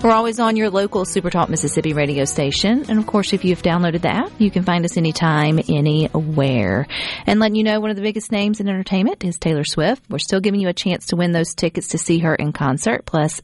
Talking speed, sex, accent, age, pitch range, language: 235 wpm, female, American, 40-59, 155-215 Hz, English